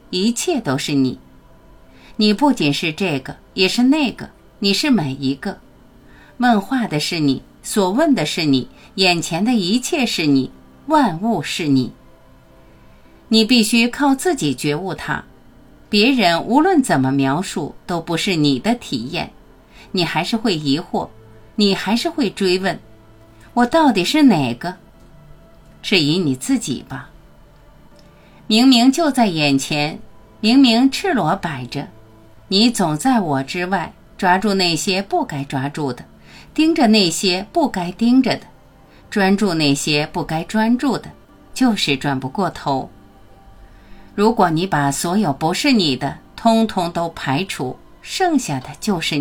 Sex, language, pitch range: female, Chinese, 140-230 Hz